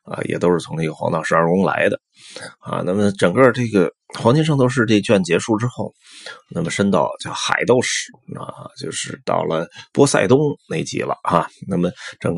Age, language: 30-49, Chinese